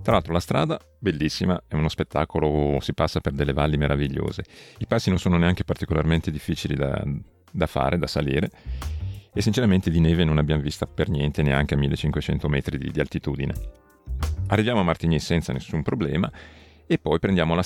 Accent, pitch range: native, 75-90 Hz